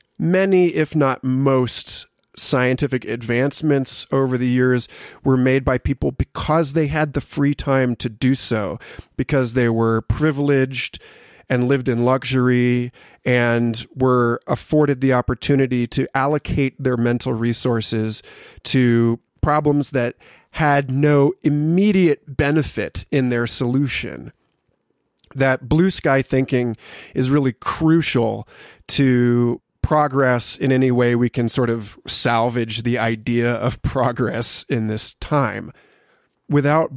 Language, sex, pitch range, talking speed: English, male, 120-145 Hz, 120 wpm